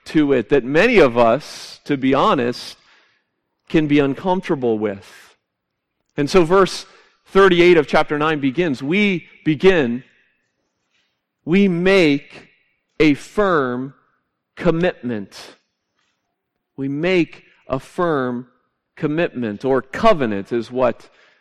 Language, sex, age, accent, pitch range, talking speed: English, male, 40-59, American, 125-170 Hz, 105 wpm